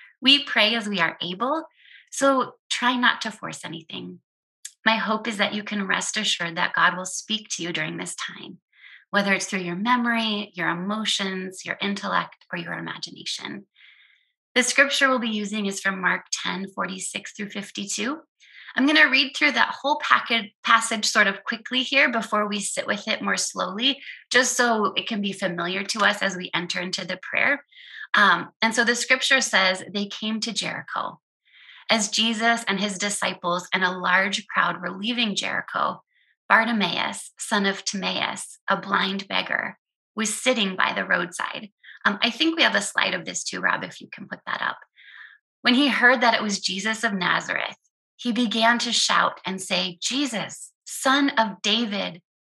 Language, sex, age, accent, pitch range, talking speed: English, female, 20-39, American, 195-245 Hz, 180 wpm